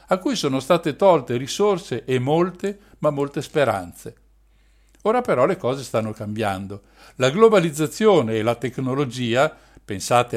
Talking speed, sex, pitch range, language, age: 135 wpm, male, 115-170 Hz, Italian, 60-79